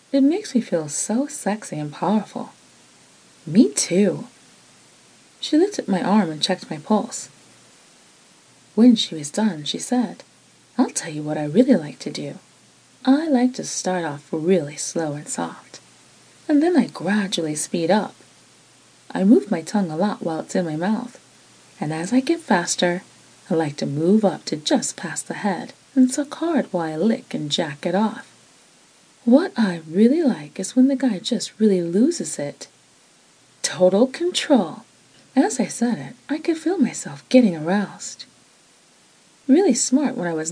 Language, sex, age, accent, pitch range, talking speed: English, female, 20-39, American, 170-255 Hz, 165 wpm